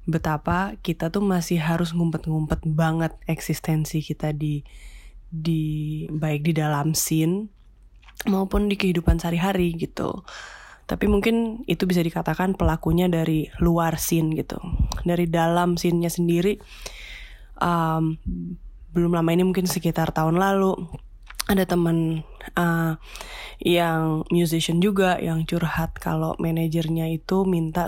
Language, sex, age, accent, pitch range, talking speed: Indonesian, female, 20-39, native, 160-175 Hz, 115 wpm